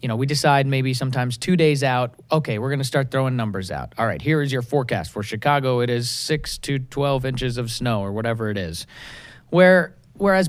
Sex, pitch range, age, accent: male, 120-150 Hz, 30-49, American